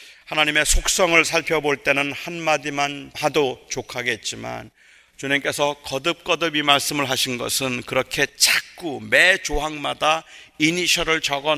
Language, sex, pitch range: Korean, male, 115-145 Hz